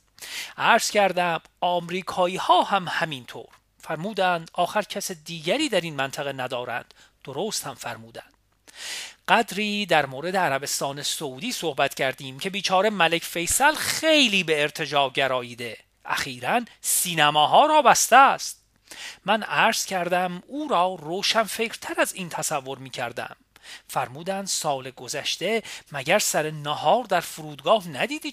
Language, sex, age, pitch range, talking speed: Persian, male, 40-59, 145-205 Hz, 125 wpm